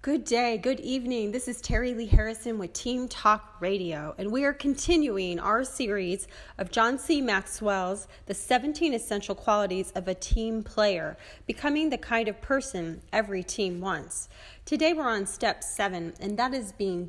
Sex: female